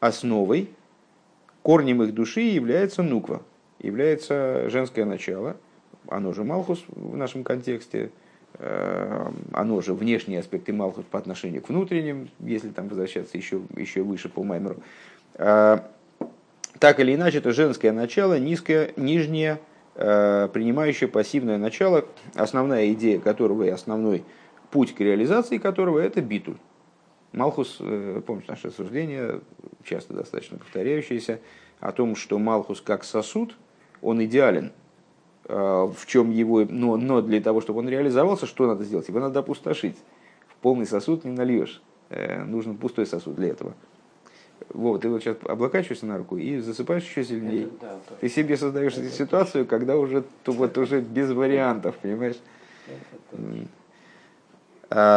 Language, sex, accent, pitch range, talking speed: Russian, male, native, 110-145 Hz, 130 wpm